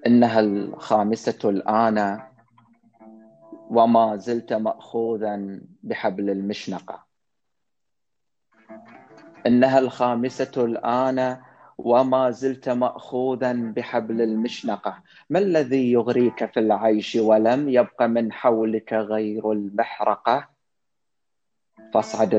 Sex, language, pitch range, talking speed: male, Arabic, 110-130 Hz, 75 wpm